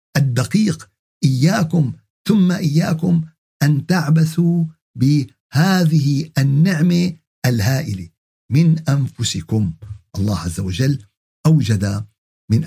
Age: 50-69